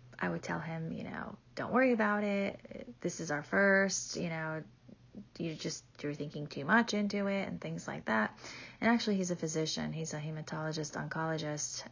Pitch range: 155-200 Hz